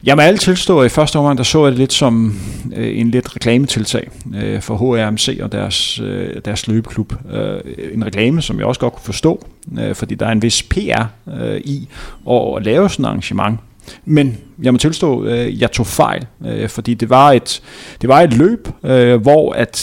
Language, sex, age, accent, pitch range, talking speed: Danish, male, 30-49, native, 110-135 Hz, 180 wpm